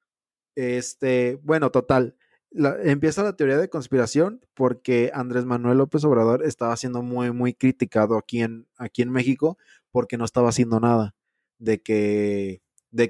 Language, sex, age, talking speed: Spanish, male, 20-39, 145 wpm